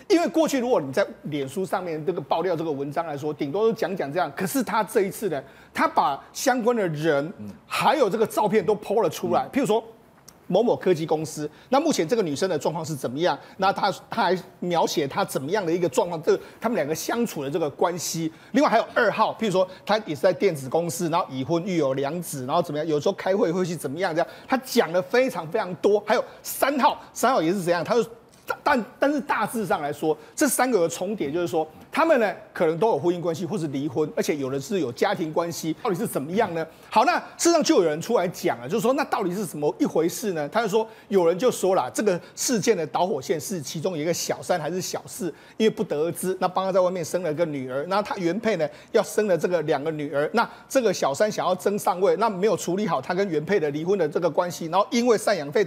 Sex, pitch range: male, 165-230 Hz